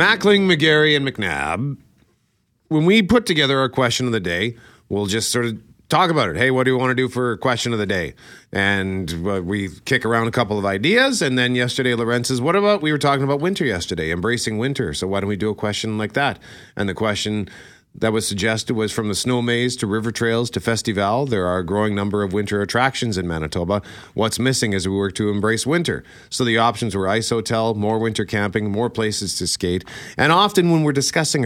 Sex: male